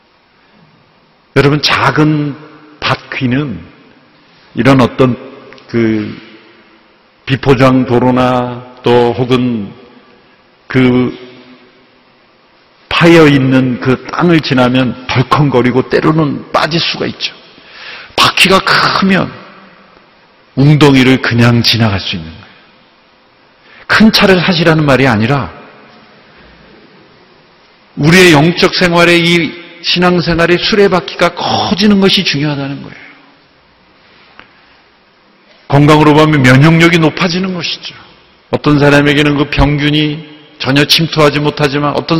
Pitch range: 130-160 Hz